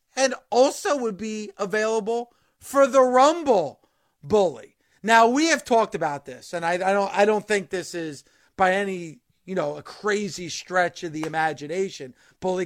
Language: English